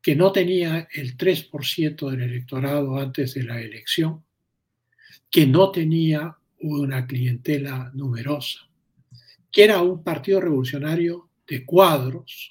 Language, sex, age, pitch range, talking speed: Spanish, male, 60-79, 125-155 Hz, 115 wpm